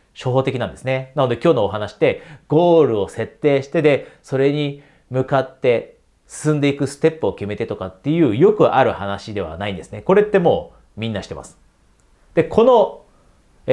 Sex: male